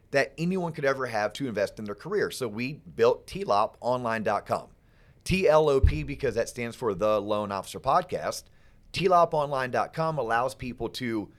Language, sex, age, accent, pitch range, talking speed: English, male, 30-49, American, 115-155 Hz, 140 wpm